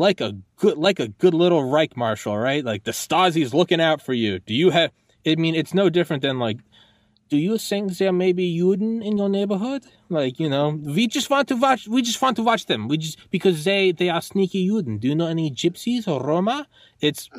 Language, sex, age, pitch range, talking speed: English, male, 20-39, 110-165 Hz, 235 wpm